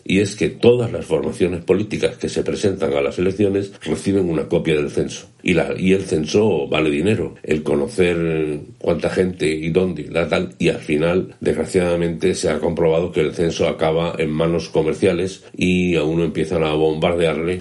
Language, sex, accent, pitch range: Spanish, male, Spanish, 75-95 Hz